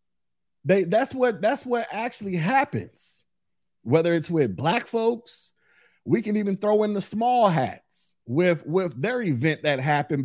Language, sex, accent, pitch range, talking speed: English, male, American, 130-195 Hz, 150 wpm